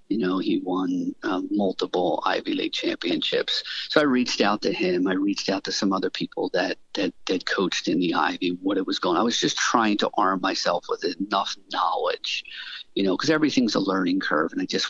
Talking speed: 215 wpm